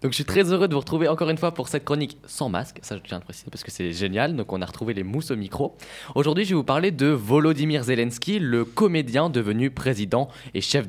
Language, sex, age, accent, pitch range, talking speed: French, male, 20-39, French, 110-150 Hz, 260 wpm